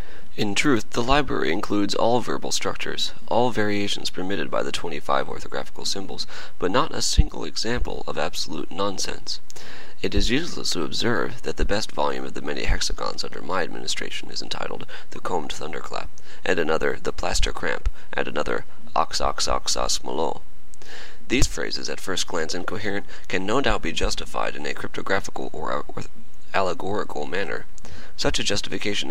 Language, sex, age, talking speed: English, male, 30-49, 160 wpm